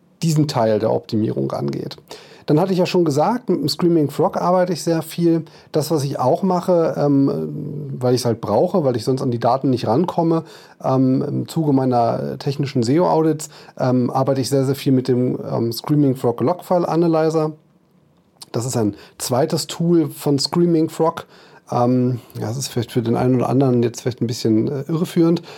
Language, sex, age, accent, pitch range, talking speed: German, male, 30-49, German, 120-160 Hz, 190 wpm